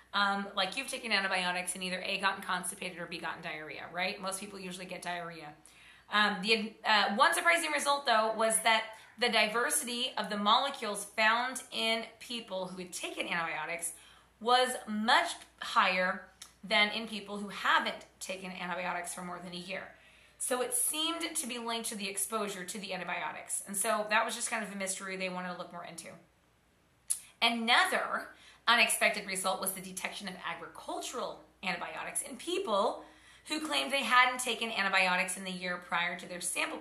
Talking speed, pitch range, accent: 175 wpm, 185-240 Hz, American